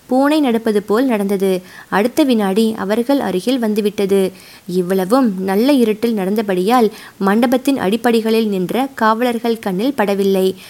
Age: 20-39